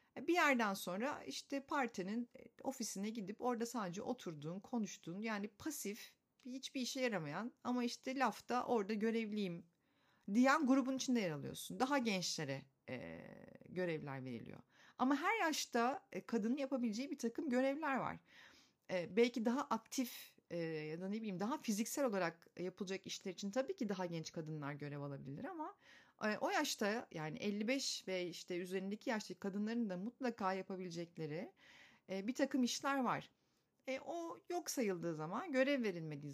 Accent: native